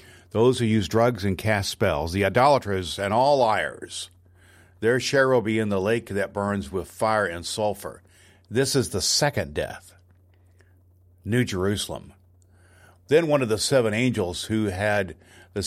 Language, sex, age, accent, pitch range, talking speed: English, male, 60-79, American, 90-110 Hz, 155 wpm